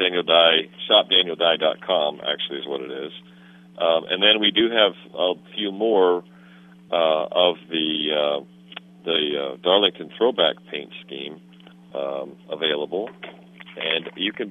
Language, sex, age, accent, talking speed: English, male, 50-69, American, 125 wpm